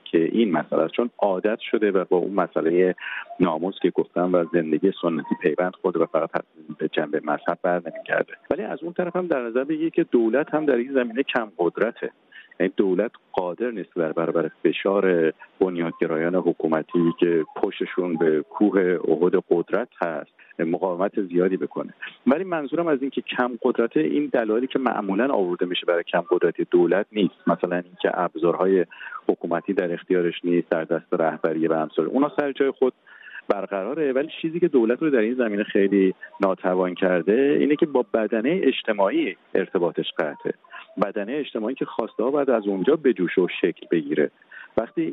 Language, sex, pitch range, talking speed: Persian, male, 90-145 Hz, 170 wpm